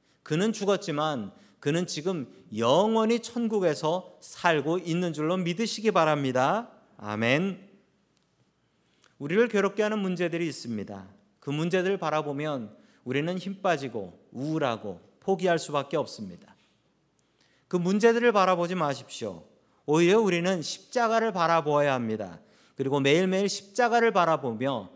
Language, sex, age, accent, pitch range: Korean, male, 40-59, native, 140-195 Hz